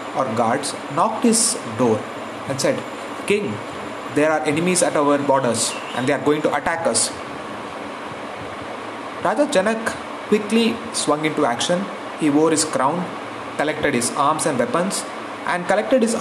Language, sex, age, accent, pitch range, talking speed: English, male, 30-49, Indian, 140-185 Hz, 145 wpm